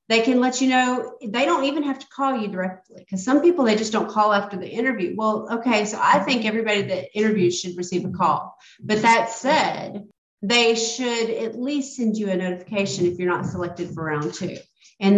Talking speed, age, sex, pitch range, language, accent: 215 wpm, 40-59, female, 180-230 Hz, English, American